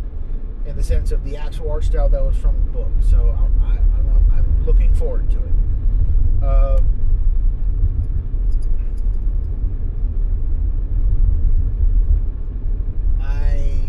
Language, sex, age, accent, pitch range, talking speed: English, male, 30-49, American, 80-95 Hz, 105 wpm